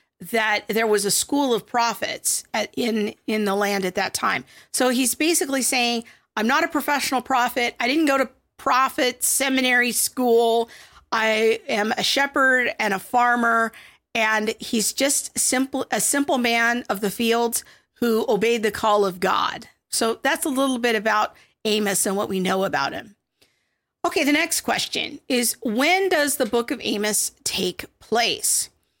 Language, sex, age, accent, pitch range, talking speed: English, female, 50-69, American, 220-275 Hz, 165 wpm